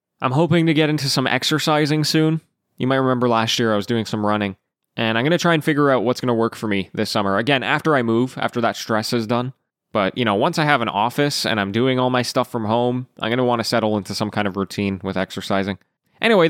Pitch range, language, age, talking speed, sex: 115-150 Hz, English, 20-39, 265 wpm, male